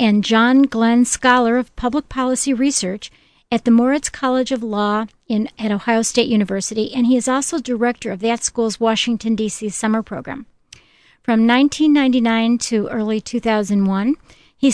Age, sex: 50-69, female